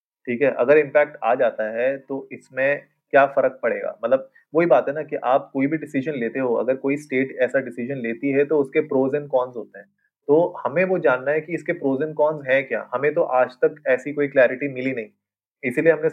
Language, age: Hindi, 30-49